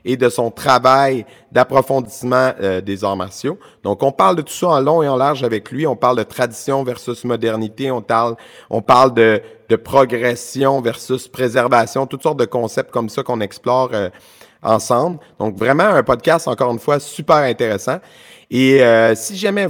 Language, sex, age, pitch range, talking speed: French, male, 30-49, 115-140 Hz, 175 wpm